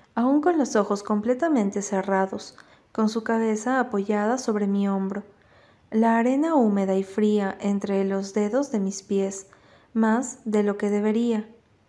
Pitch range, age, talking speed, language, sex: 205-245 Hz, 20-39, 145 wpm, Spanish, female